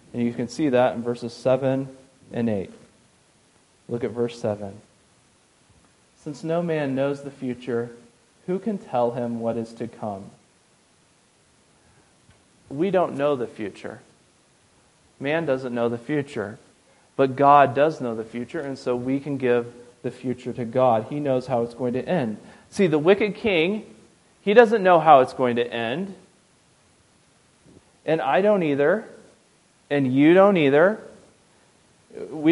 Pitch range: 120-170 Hz